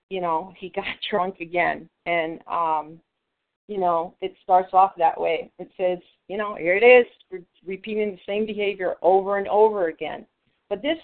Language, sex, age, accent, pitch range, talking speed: English, female, 40-59, American, 180-215 Hz, 175 wpm